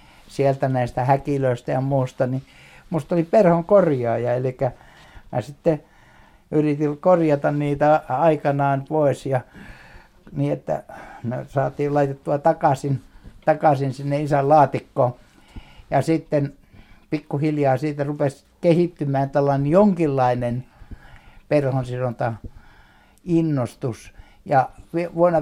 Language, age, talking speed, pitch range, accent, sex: Finnish, 60-79, 90 wpm, 125-150 Hz, native, male